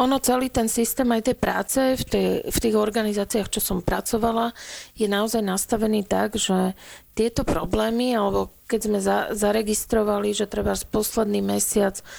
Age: 40-59